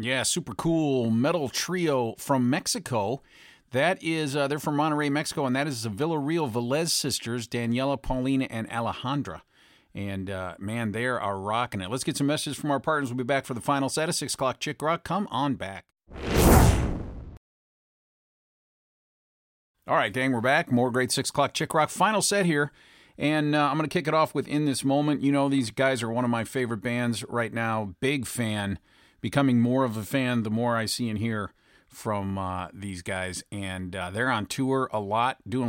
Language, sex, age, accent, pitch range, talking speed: English, male, 50-69, American, 100-135 Hz, 195 wpm